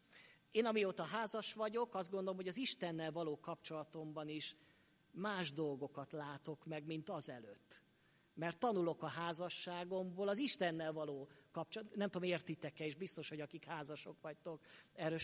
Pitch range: 150-180 Hz